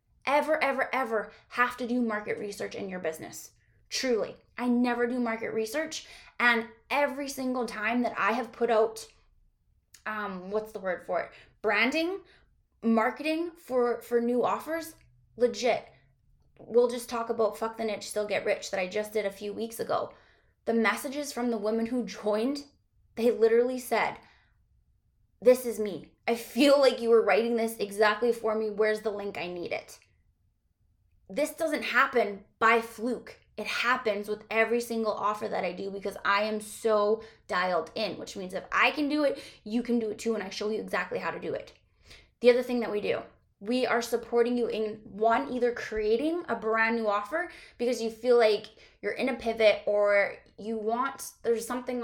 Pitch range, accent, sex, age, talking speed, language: 215-245 Hz, American, female, 20-39, 180 wpm, English